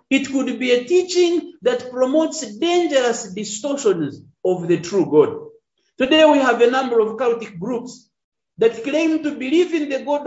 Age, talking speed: 50-69, 165 wpm